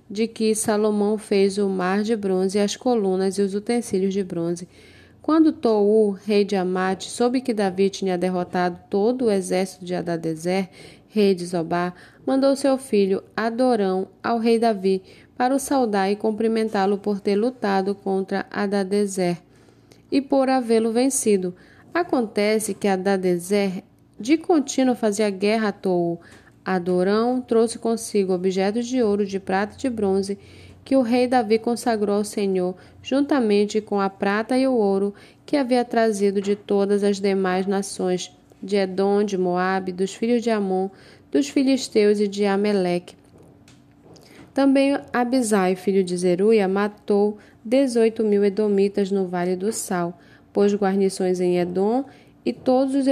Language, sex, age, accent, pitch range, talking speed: Portuguese, female, 10-29, Brazilian, 190-230 Hz, 145 wpm